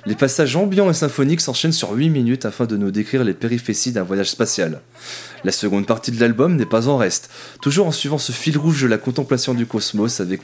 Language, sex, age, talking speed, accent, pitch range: French, male, 20-39, 225 wpm, French, 105-135 Hz